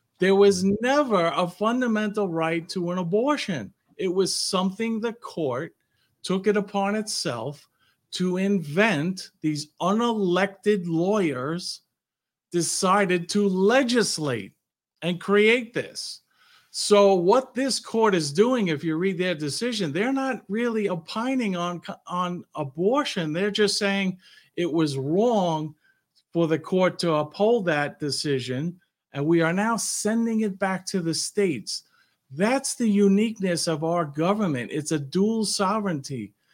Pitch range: 165-210 Hz